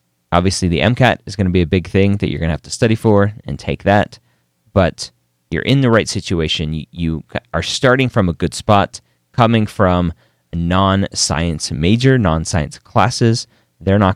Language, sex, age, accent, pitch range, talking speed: English, male, 30-49, American, 80-115 Hz, 180 wpm